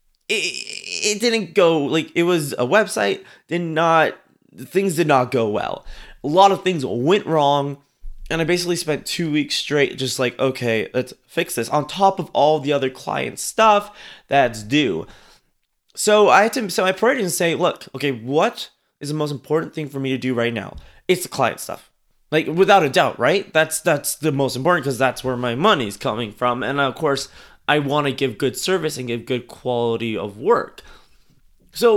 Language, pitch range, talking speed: English, 130-170 Hz, 195 wpm